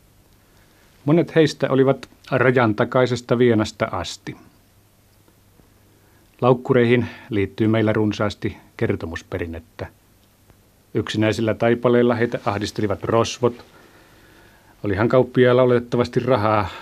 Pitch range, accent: 100-120 Hz, native